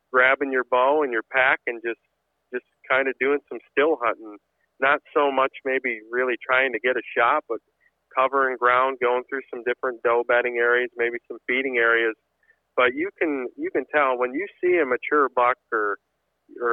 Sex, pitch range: male, 115-135 Hz